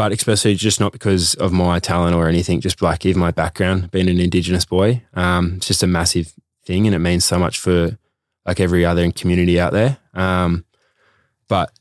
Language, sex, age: English, male, 20-39